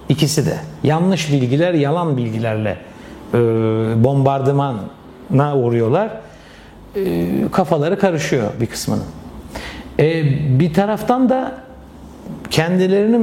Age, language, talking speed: 60-79, Turkish, 85 wpm